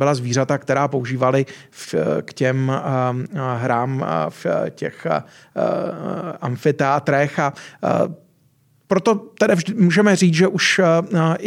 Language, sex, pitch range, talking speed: Czech, male, 140-160 Hz, 110 wpm